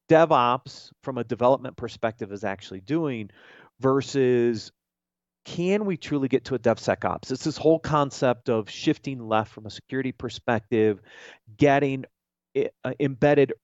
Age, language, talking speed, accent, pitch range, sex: 40-59, English, 130 wpm, American, 110-140 Hz, male